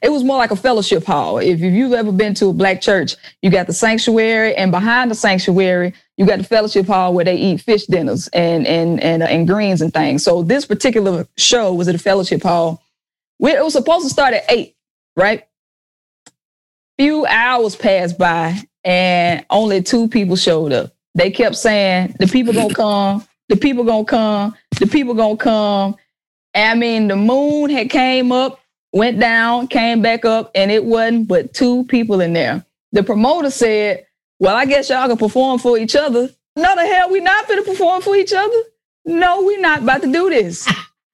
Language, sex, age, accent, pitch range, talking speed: English, female, 20-39, American, 195-275 Hz, 195 wpm